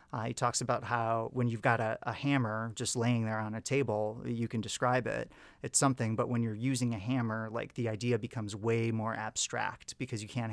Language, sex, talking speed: English, male, 220 wpm